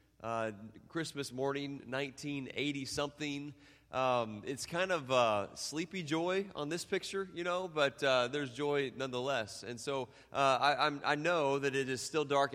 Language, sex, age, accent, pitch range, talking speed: English, male, 30-49, American, 115-150 Hz, 160 wpm